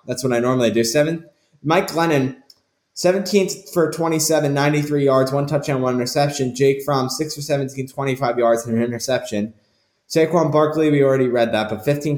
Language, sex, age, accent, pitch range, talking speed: English, male, 10-29, American, 120-185 Hz, 170 wpm